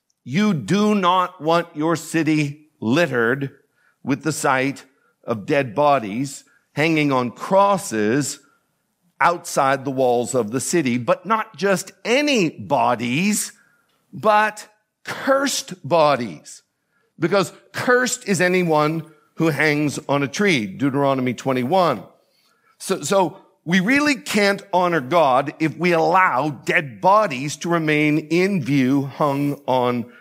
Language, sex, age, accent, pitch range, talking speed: English, male, 50-69, American, 140-190 Hz, 115 wpm